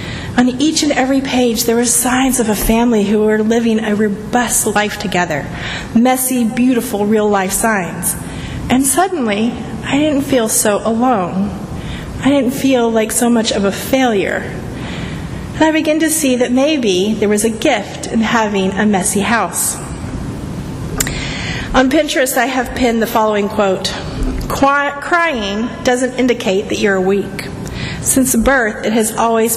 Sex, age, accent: female, 40-59, American